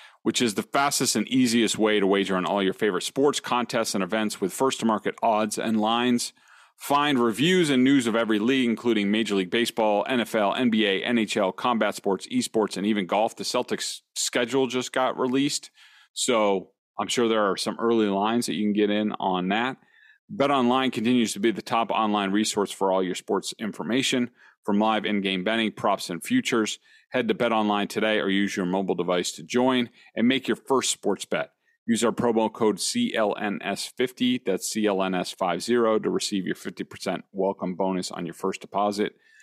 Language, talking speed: English, 180 wpm